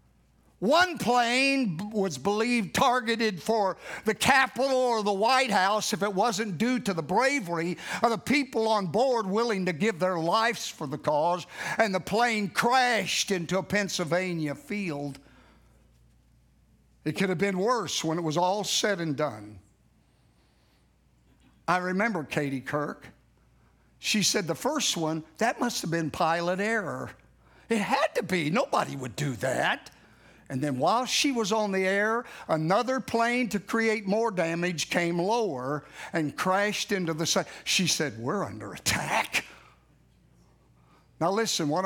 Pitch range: 150-220 Hz